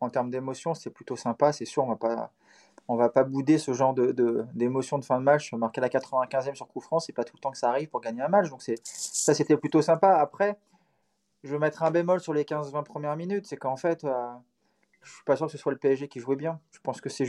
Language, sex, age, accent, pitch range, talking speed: French, male, 20-39, French, 125-150 Hz, 280 wpm